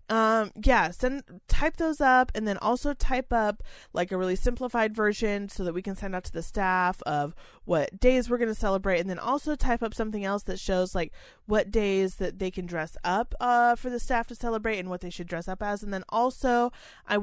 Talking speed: 225 wpm